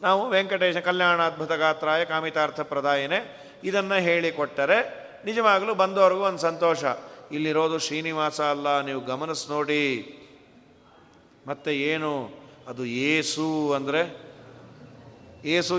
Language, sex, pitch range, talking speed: Kannada, male, 155-225 Hz, 95 wpm